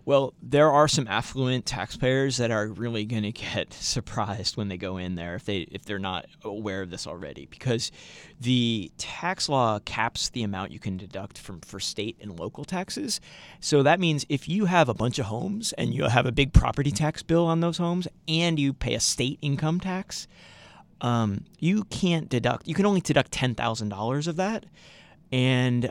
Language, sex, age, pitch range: English, male, 30-49, 115-160 Hz